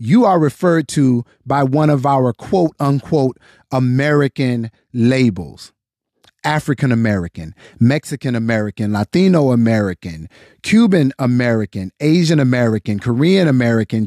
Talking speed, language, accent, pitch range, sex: 75 wpm, English, American, 125-185 Hz, male